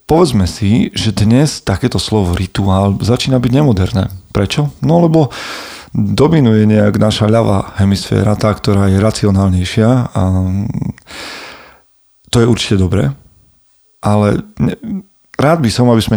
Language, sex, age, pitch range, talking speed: Slovak, male, 40-59, 95-115 Hz, 120 wpm